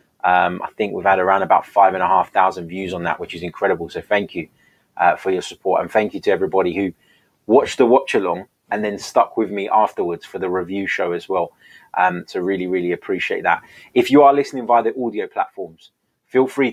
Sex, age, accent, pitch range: male, 20-39, British, 90-115 Hz